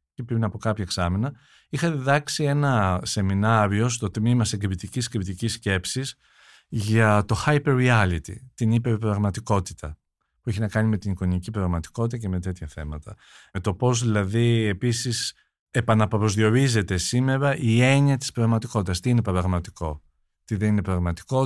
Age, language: 50-69, Greek